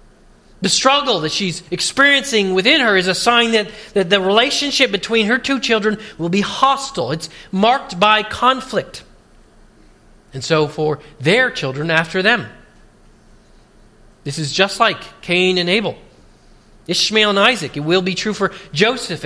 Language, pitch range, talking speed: English, 175-220 Hz, 150 wpm